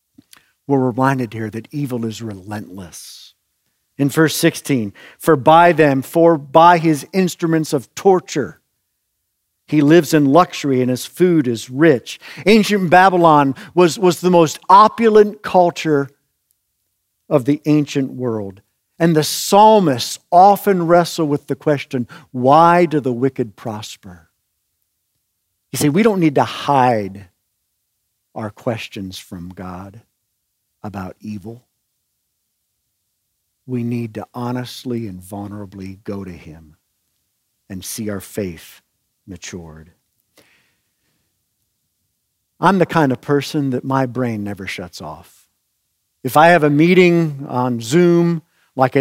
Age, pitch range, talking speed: 50-69, 105-155 Hz, 120 wpm